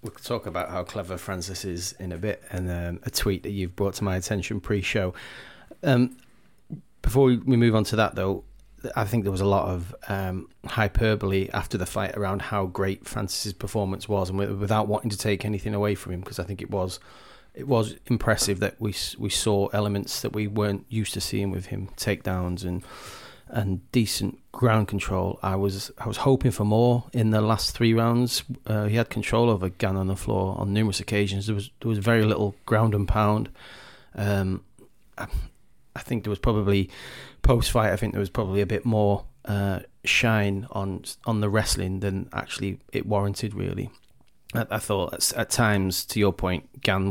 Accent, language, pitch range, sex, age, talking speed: British, English, 95-110 Hz, male, 30-49, 195 wpm